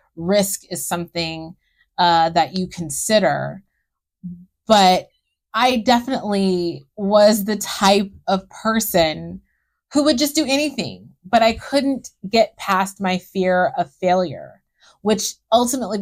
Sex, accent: female, American